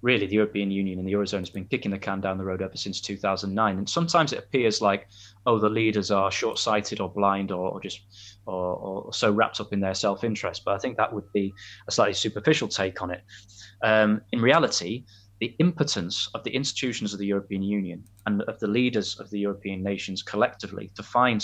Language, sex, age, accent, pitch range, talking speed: English, male, 20-39, British, 100-115 Hz, 215 wpm